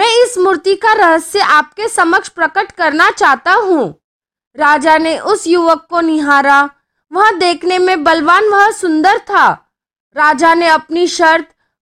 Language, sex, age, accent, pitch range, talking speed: Hindi, female, 20-39, native, 320-395 Hz, 50 wpm